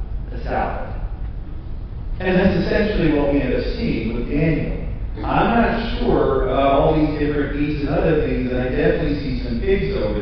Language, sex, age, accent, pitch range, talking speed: English, male, 40-59, American, 110-150 Hz, 170 wpm